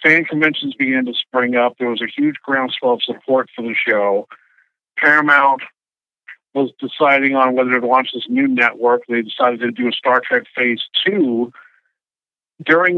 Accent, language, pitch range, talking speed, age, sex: American, English, 125-170 Hz, 165 wpm, 50-69, male